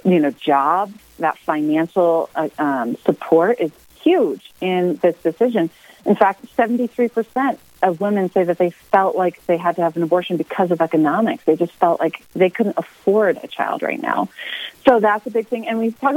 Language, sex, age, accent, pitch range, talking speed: English, female, 30-49, American, 165-220 Hz, 190 wpm